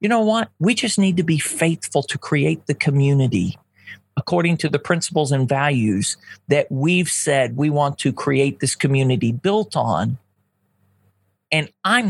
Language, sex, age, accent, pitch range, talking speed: English, male, 40-59, American, 140-210 Hz, 160 wpm